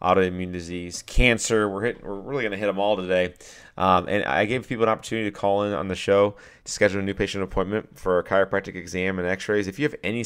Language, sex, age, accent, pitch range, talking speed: English, male, 30-49, American, 90-105 Hz, 245 wpm